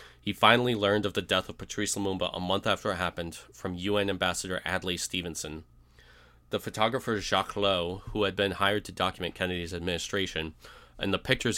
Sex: male